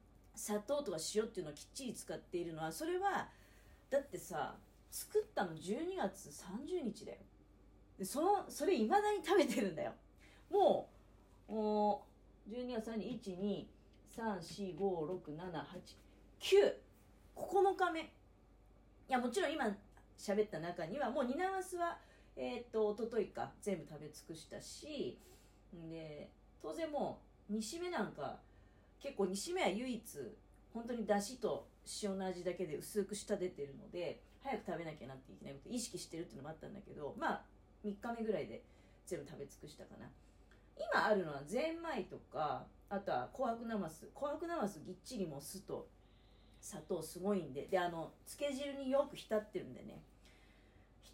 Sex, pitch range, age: female, 175-280 Hz, 40-59